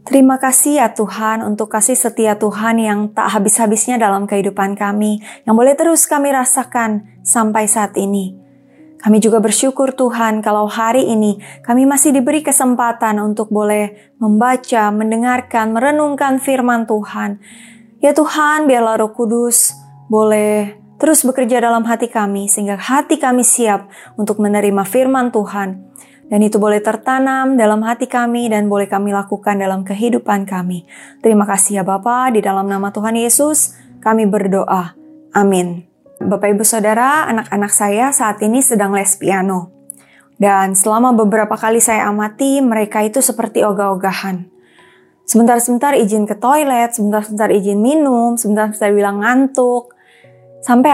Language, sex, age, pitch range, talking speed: Indonesian, female, 20-39, 205-250 Hz, 135 wpm